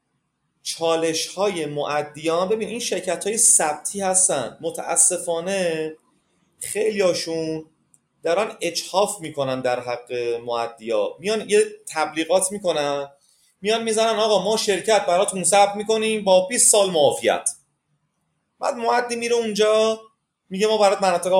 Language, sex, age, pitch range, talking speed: Persian, male, 30-49, 155-210 Hz, 115 wpm